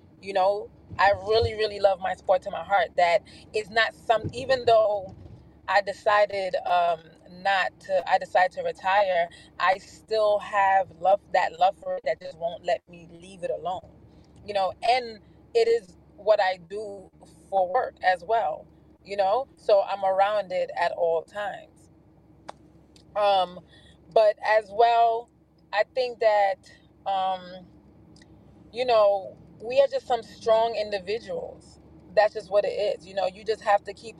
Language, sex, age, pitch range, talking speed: English, female, 20-39, 185-225 Hz, 160 wpm